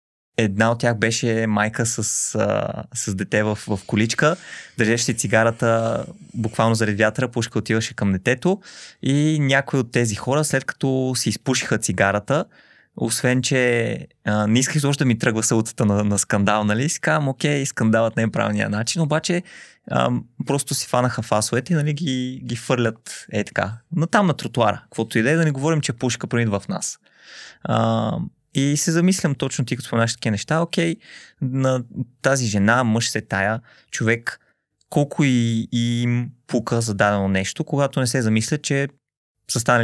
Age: 20-39